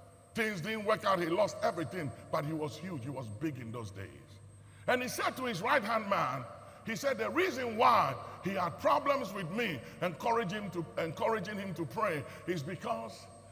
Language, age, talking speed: English, 50-69, 185 wpm